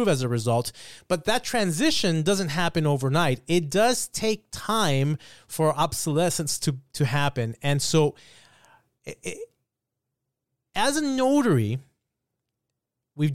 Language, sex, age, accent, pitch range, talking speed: English, male, 20-39, American, 125-165 Hz, 110 wpm